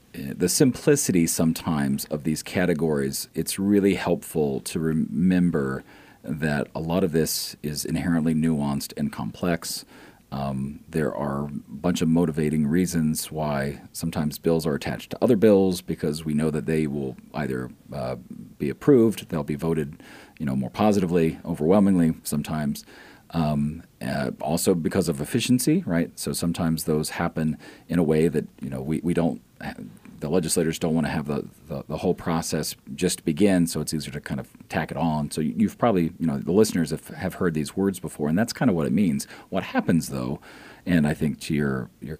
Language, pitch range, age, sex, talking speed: English, 75-85 Hz, 40-59, male, 180 wpm